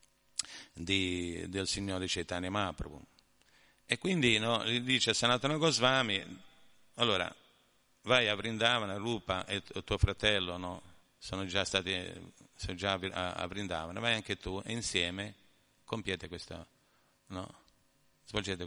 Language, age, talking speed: Italian, 50-69, 120 wpm